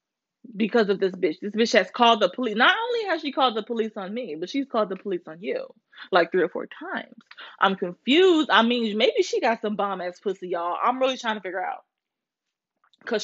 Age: 20-39